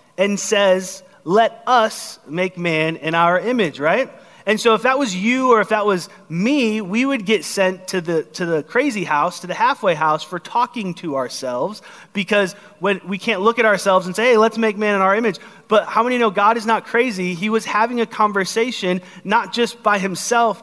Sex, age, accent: male, 30-49, American